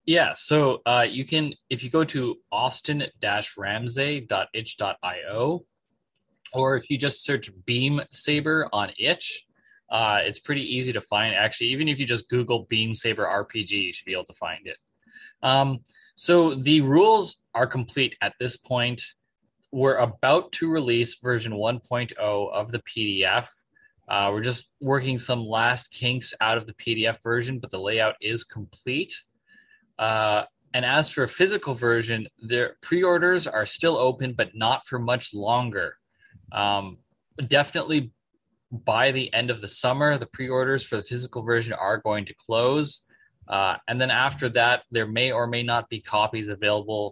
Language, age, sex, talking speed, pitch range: English, 20-39, male, 160 wpm, 110-140 Hz